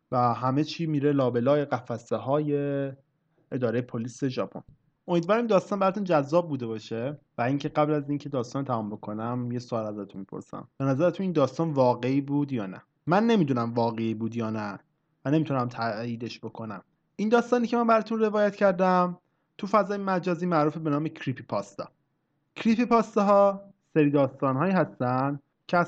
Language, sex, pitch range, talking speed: Persian, male, 130-180 Hz, 160 wpm